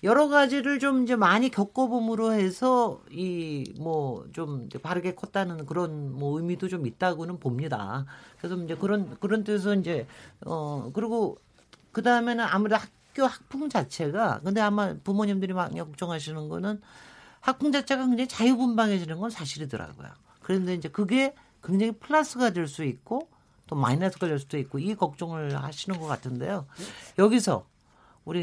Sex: male